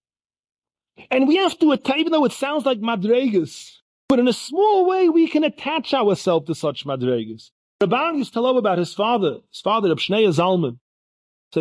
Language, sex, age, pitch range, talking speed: English, male, 40-59, 135-190 Hz, 180 wpm